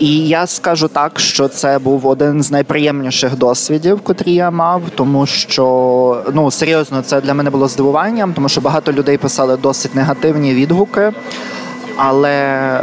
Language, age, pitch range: Ukrainian, 20-39, 135-155 Hz